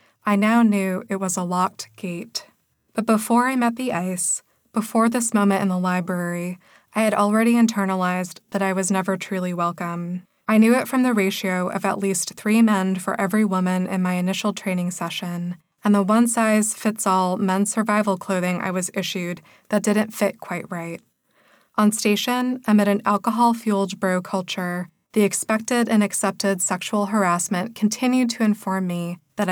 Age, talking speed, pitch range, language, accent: 20-39, 165 wpm, 180-215 Hz, English, American